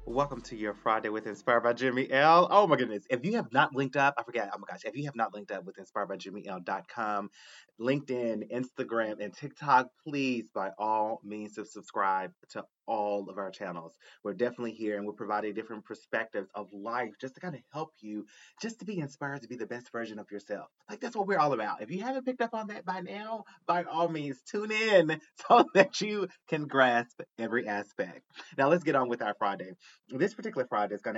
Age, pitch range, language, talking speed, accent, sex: 30-49, 100-145 Hz, English, 220 wpm, American, male